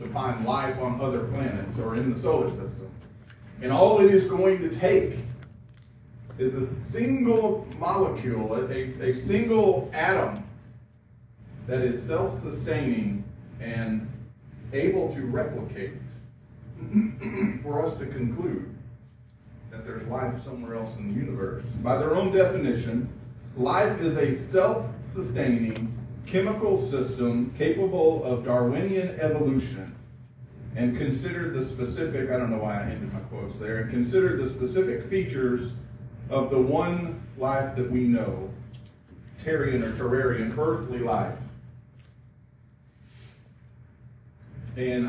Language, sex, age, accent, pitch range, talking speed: English, male, 40-59, American, 120-130 Hz, 120 wpm